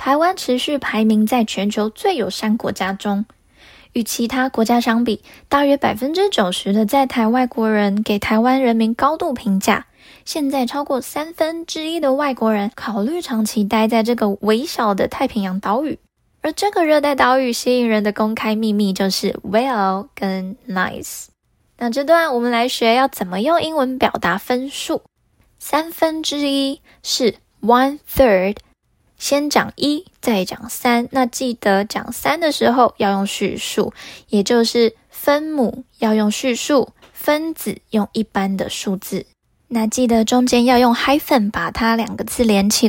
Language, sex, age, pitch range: Chinese, female, 10-29, 215-275 Hz